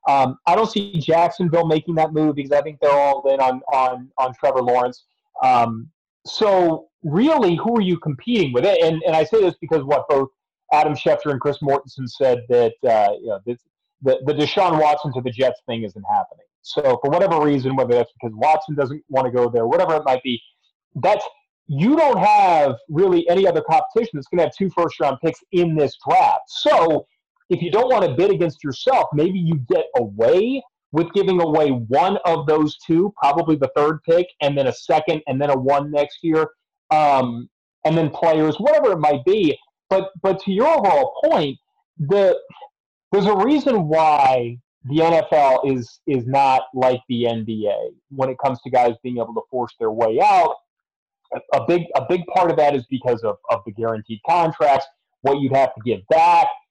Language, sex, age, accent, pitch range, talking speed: English, male, 30-49, American, 135-185 Hz, 195 wpm